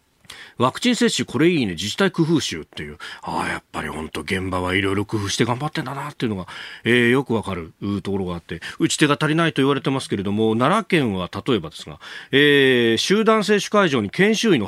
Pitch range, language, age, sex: 105-175 Hz, Japanese, 40-59, male